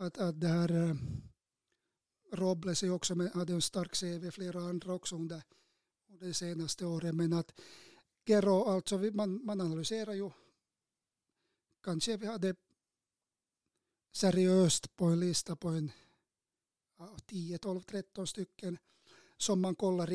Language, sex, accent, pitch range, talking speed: Swedish, male, Finnish, 170-195 Hz, 125 wpm